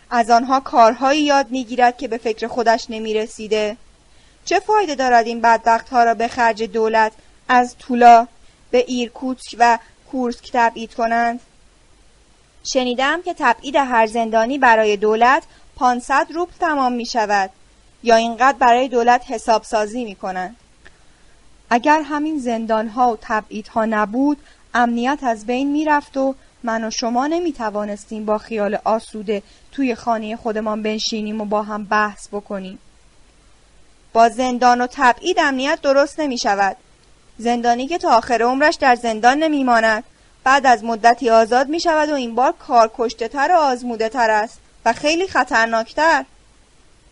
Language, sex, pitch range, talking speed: Persian, female, 225-270 Hz, 140 wpm